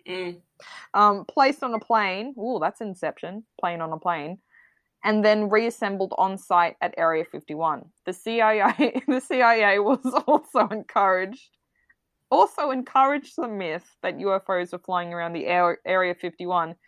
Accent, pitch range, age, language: Australian, 185-255 Hz, 20-39, English